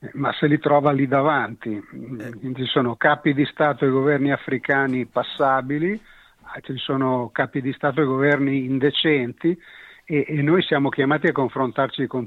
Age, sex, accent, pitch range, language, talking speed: 60-79, male, native, 125-145 Hz, Italian, 150 wpm